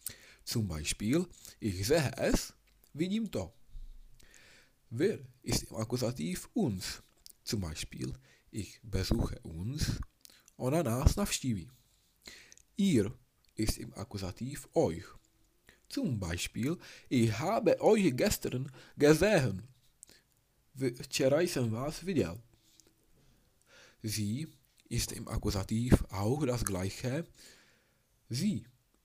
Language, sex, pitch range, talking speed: Czech, male, 105-130 Hz, 90 wpm